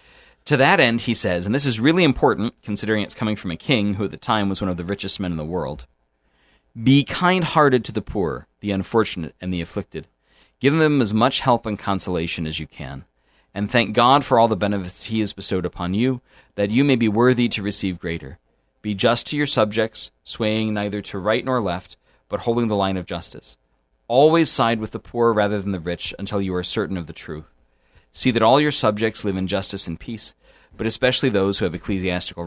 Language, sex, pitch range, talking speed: English, male, 90-115 Hz, 220 wpm